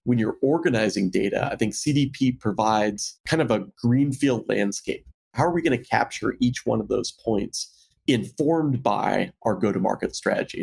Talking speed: 165 wpm